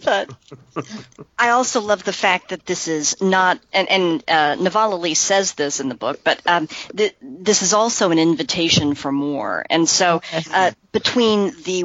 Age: 50-69